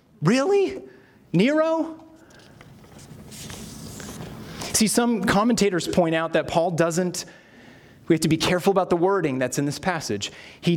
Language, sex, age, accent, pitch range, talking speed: English, male, 30-49, American, 140-185 Hz, 130 wpm